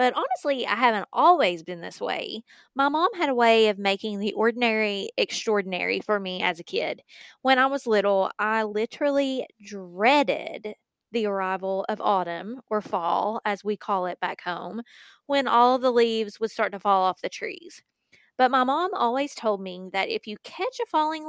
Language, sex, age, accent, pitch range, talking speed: English, female, 20-39, American, 200-245 Hz, 185 wpm